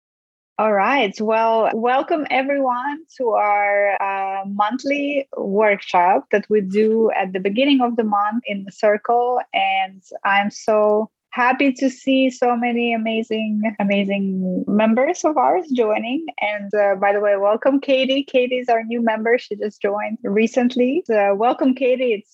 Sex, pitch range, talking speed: female, 200-245 Hz, 150 wpm